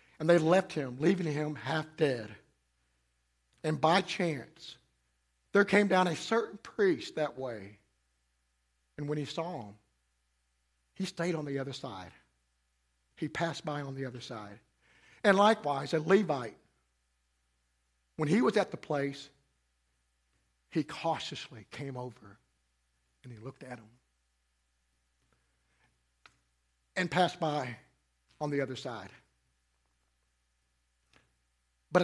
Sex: male